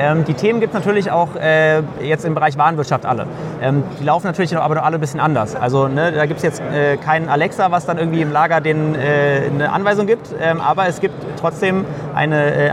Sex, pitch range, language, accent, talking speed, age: male, 150-175 Hz, German, German, 205 wpm, 30-49